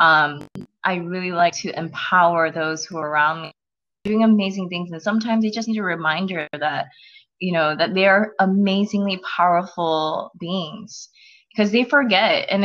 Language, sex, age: English, female, 20-39